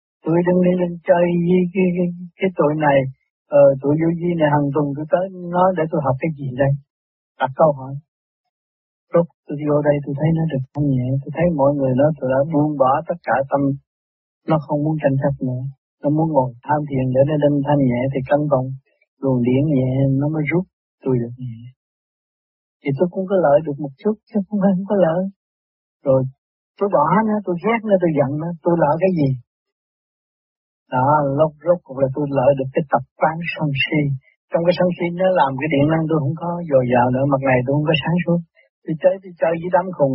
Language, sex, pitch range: Vietnamese, male, 135-170 Hz